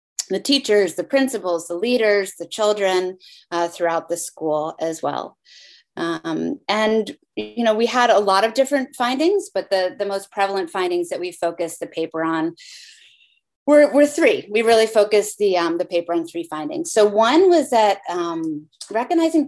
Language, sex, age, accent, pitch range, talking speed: English, female, 30-49, American, 175-245 Hz, 175 wpm